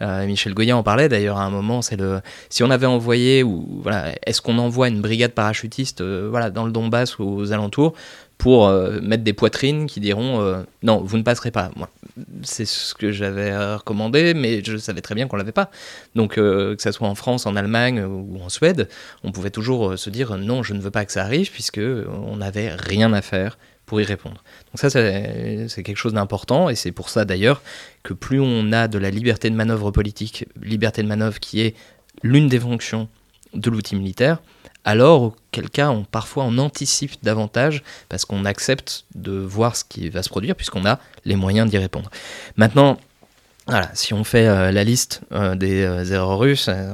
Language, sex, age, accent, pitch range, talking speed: French, male, 20-39, French, 100-120 Hz, 205 wpm